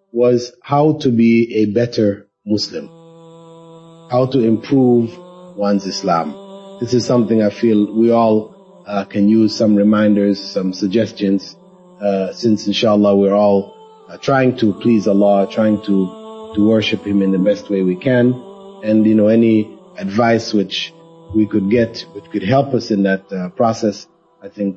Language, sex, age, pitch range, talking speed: English, male, 30-49, 105-165 Hz, 160 wpm